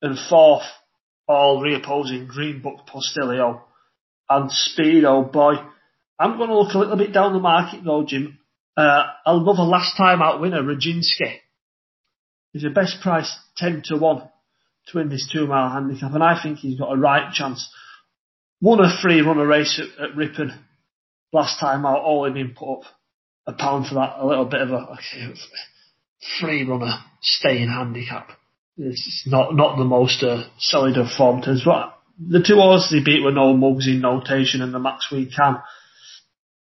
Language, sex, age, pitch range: English, male, 30-49, 135-170 Hz